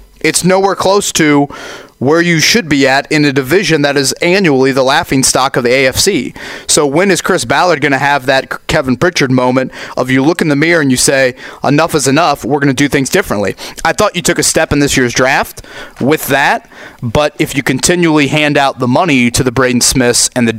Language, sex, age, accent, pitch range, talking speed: English, male, 30-49, American, 125-155 Hz, 220 wpm